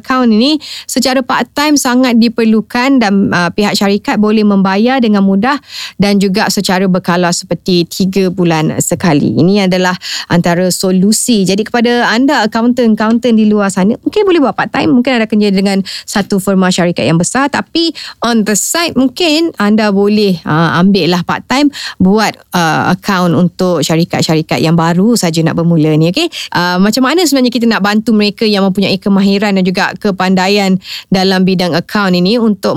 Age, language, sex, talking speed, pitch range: 20-39, Malay, female, 160 wpm, 180-225 Hz